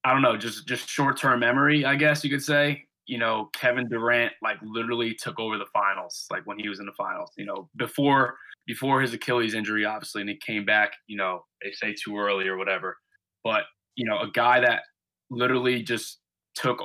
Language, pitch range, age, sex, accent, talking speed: English, 115-135 Hz, 20-39, male, American, 205 wpm